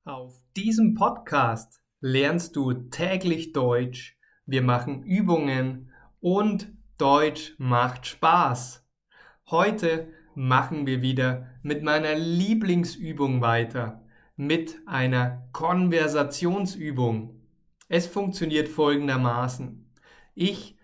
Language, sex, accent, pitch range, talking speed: German, male, German, 130-170 Hz, 85 wpm